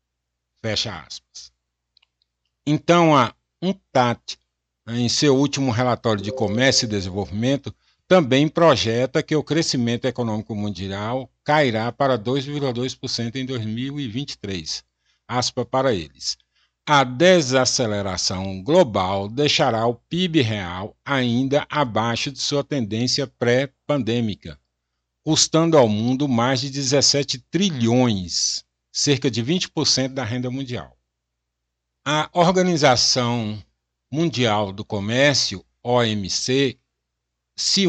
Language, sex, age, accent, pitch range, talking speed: Portuguese, male, 60-79, Brazilian, 105-140 Hz, 95 wpm